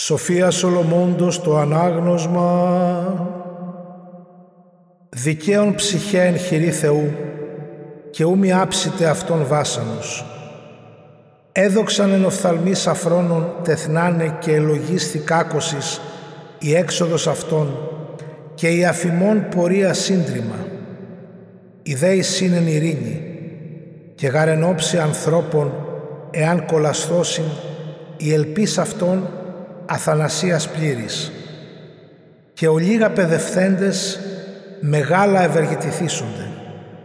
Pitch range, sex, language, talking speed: 160-180 Hz, male, Greek, 75 wpm